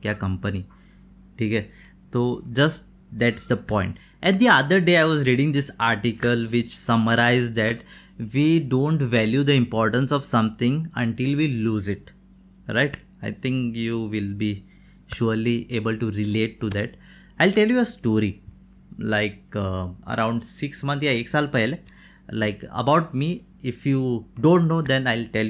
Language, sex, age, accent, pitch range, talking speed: Hindi, male, 20-39, native, 110-140 Hz, 160 wpm